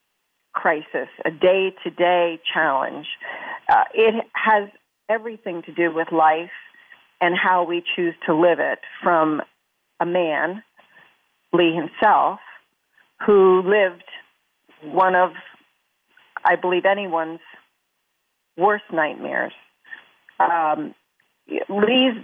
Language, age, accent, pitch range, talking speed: English, 40-59, American, 165-195 Hz, 95 wpm